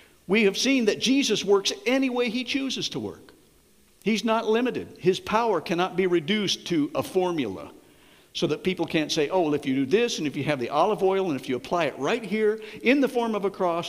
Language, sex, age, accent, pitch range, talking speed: English, male, 60-79, American, 150-220 Hz, 235 wpm